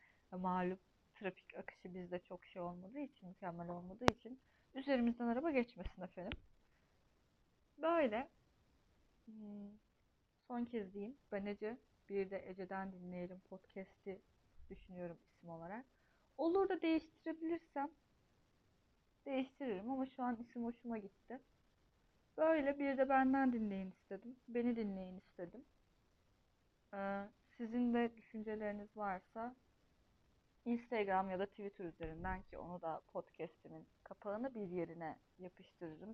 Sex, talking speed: female, 110 wpm